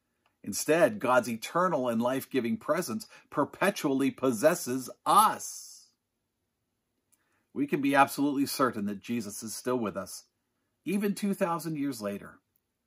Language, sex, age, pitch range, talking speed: English, male, 50-69, 120-185 Hz, 110 wpm